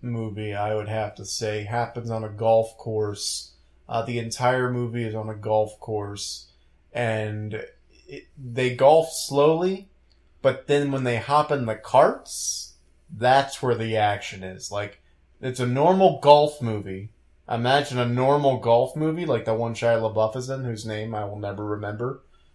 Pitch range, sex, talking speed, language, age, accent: 110-140 Hz, male, 165 wpm, English, 20-39, American